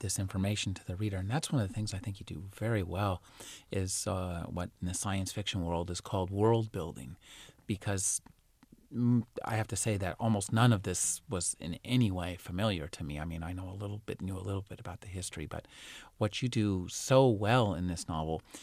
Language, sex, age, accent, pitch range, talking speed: English, male, 30-49, American, 90-115 Hz, 220 wpm